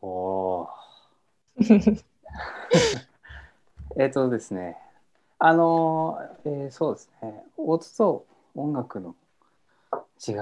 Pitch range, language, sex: 110-165 Hz, Japanese, male